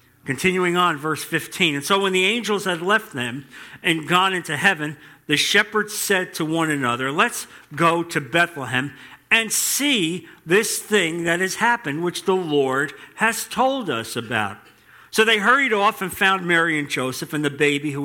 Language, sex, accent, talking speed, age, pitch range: English, male, American, 175 wpm, 50-69, 130-185 Hz